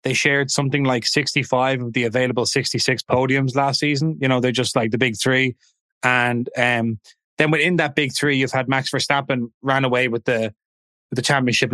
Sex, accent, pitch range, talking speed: male, Irish, 120-140 Hz, 195 wpm